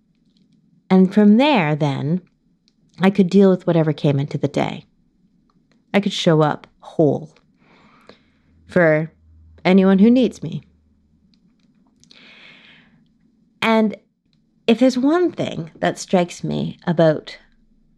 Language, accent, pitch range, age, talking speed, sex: English, American, 170-220 Hz, 30-49, 105 wpm, female